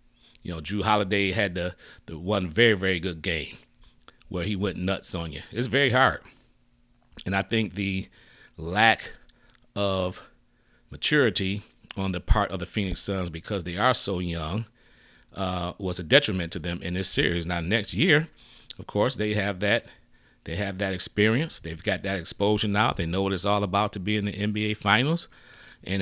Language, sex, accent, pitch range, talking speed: English, male, American, 90-115 Hz, 180 wpm